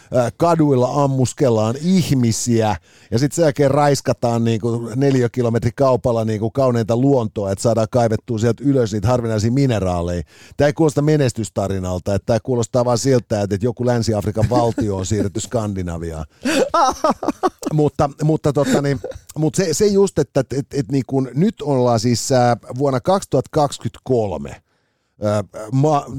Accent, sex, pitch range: native, male, 110-145 Hz